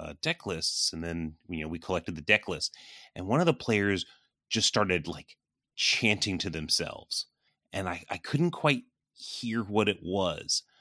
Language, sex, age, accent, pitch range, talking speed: English, male, 30-49, American, 90-115 Hz, 170 wpm